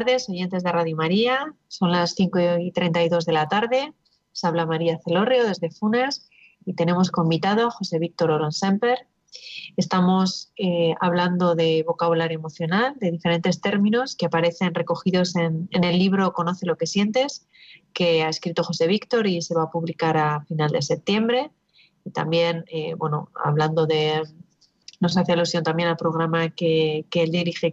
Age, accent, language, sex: 30-49, Spanish, Spanish, female